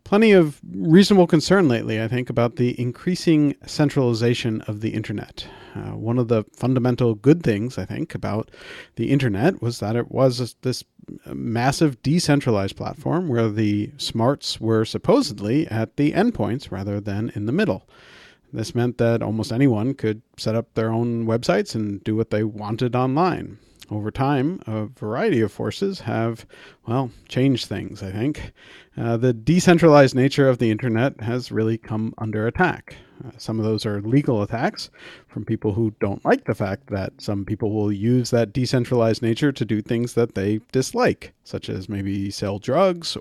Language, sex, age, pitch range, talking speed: English, male, 40-59, 110-135 Hz, 170 wpm